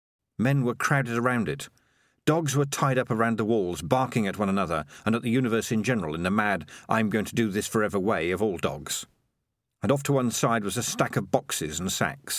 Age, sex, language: 50-69, male, English